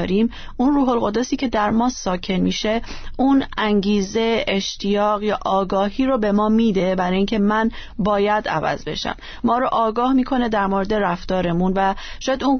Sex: female